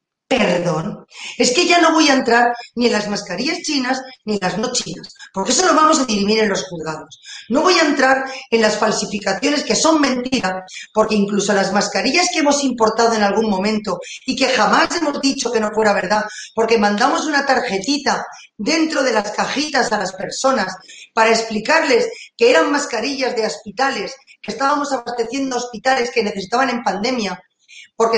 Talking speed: 175 wpm